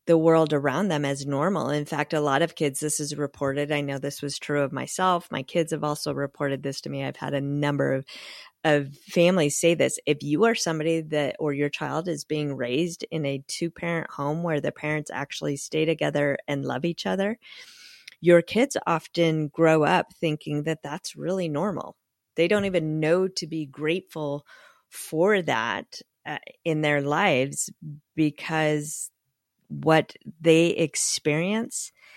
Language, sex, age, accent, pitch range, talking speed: English, female, 30-49, American, 150-175 Hz, 170 wpm